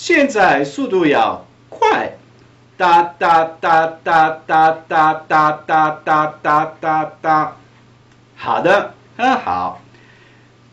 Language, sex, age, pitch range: Chinese, male, 50-69, 145-200 Hz